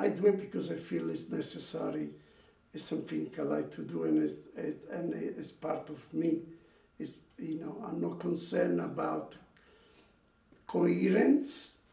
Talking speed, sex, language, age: 150 wpm, male, English, 50-69